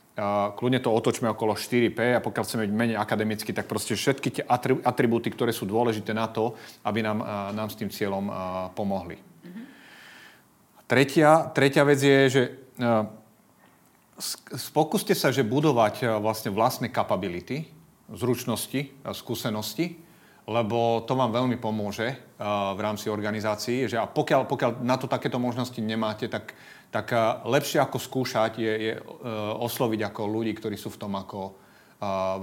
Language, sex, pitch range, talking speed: Slovak, male, 105-130 Hz, 140 wpm